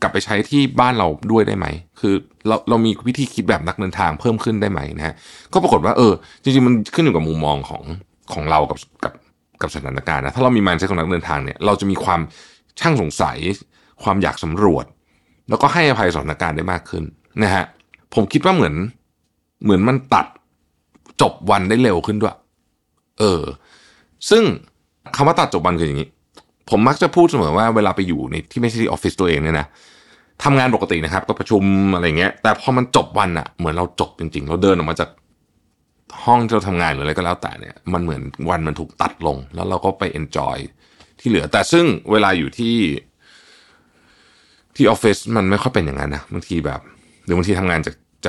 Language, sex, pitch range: Thai, male, 80-110 Hz